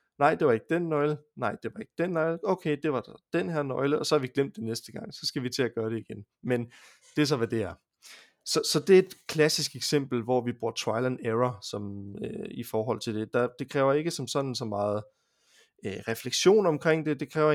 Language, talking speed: Danish, 255 wpm